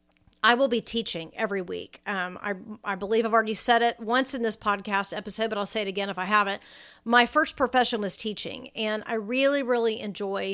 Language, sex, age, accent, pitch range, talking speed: English, female, 40-59, American, 205-235 Hz, 210 wpm